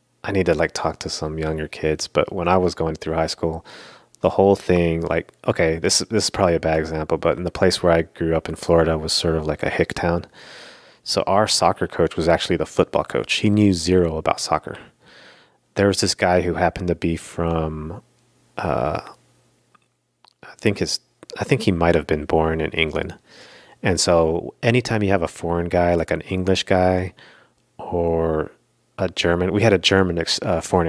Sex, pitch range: male, 85-100 Hz